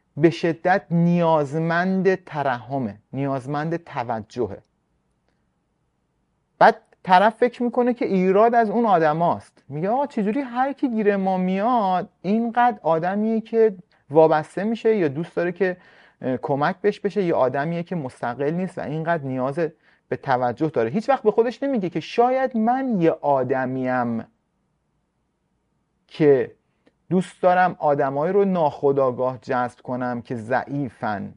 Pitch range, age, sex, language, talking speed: 125-185 Hz, 30-49, male, Persian, 125 wpm